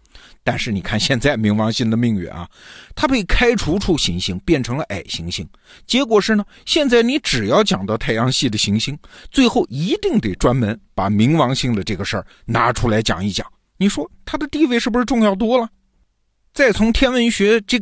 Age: 50-69